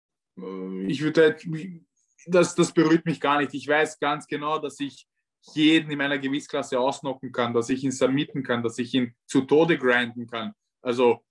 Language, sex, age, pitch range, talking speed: German, male, 20-39, 135-160 Hz, 175 wpm